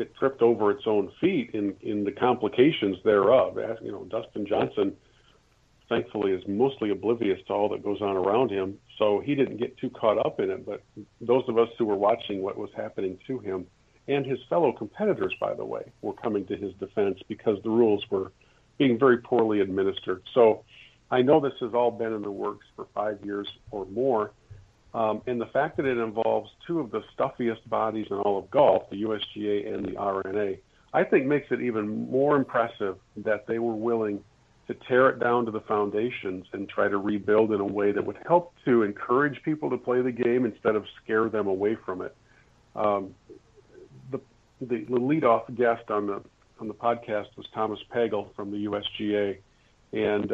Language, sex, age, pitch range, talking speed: English, male, 50-69, 105-120 Hz, 195 wpm